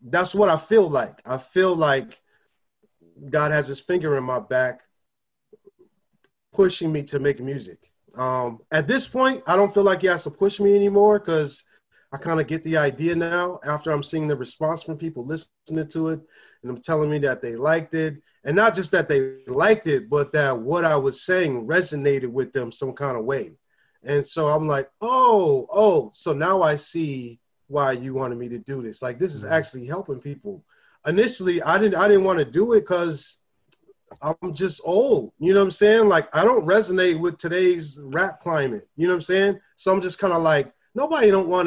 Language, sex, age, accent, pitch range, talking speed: English, male, 30-49, American, 145-200 Hz, 205 wpm